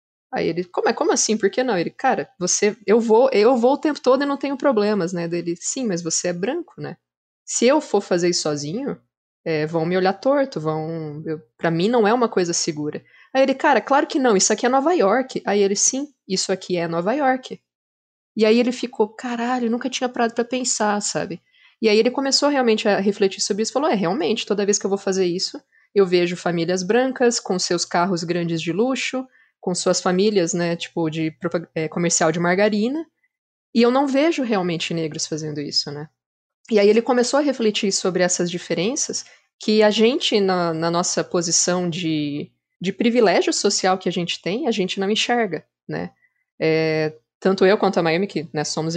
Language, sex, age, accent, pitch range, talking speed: Portuguese, female, 20-39, Brazilian, 170-235 Hz, 195 wpm